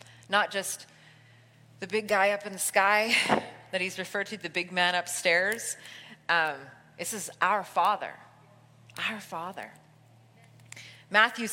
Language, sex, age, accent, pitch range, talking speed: English, female, 30-49, American, 155-230 Hz, 130 wpm